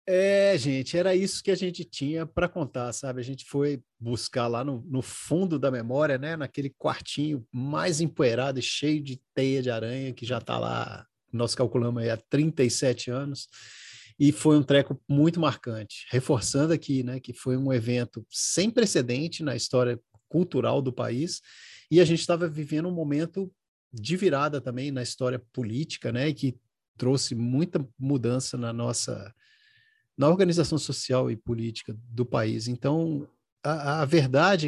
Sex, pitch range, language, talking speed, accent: male, 125-160 Hz, Portuguese, 165 wpm, Brazilian